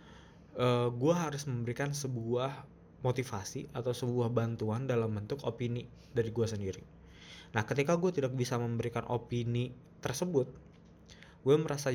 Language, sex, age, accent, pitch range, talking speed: Indonesian, male, 20-39, native, 115-135 Hz, 125 wpm